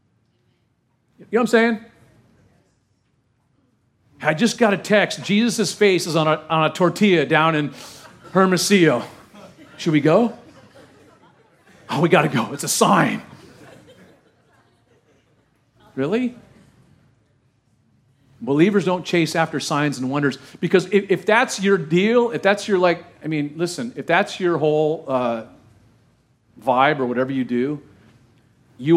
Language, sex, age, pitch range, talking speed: English, male, 40-59, 120-165 Hz, 135 wpm